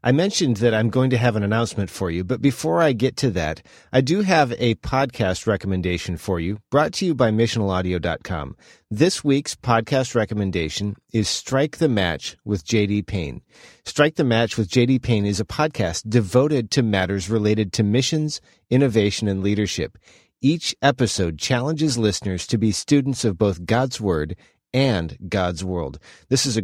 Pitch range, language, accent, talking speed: 100-130 Hz, English, American, 180 wpm